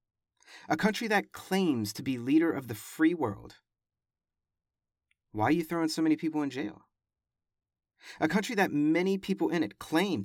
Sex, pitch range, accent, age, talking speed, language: male, 120-170 Hz, American, 40-59, 165 wpm, English